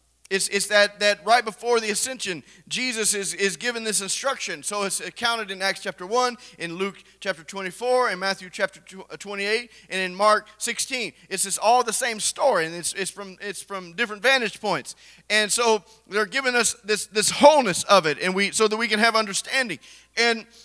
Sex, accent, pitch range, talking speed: male, American, 205-250 Hz, 200 wpm